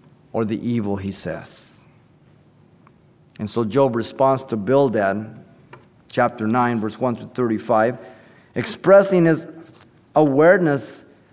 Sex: male